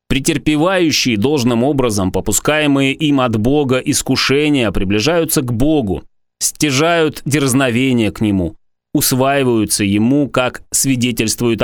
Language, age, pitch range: Russian, 20-39, 110-145 Hz